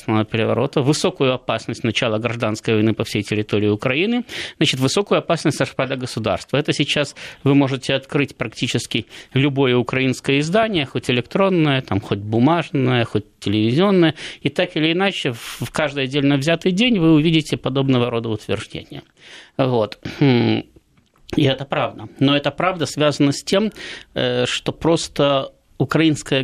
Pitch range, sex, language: 135-170 Hz, male, Russian